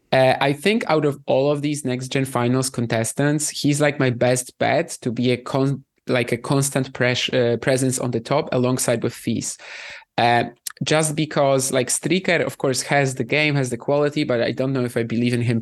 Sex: male